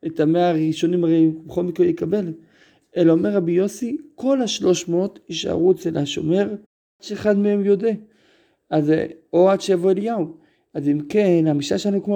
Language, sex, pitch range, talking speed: Hebrew, male, 155-195 Hz, 160 wpm